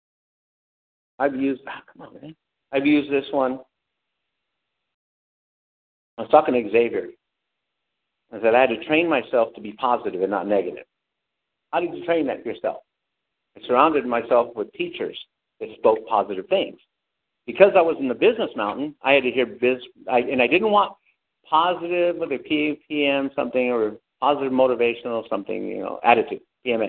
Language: English